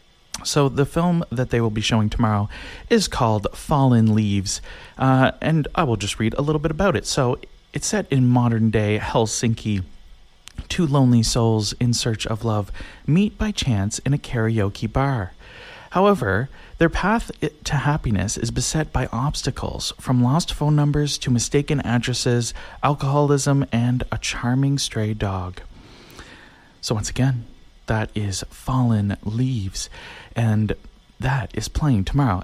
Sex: male